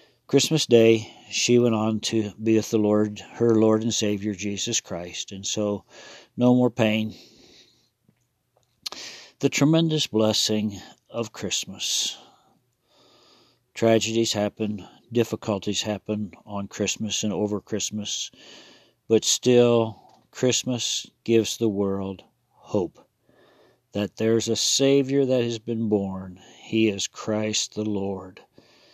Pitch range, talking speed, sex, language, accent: 105-115 Hz, 115 wpm, male, English, American